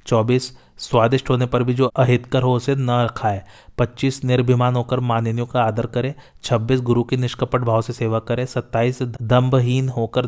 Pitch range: 115-130 Hz